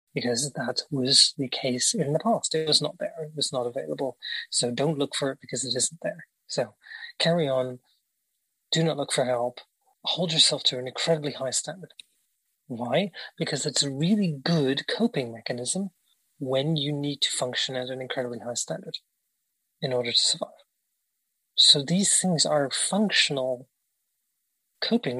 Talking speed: 160 wpm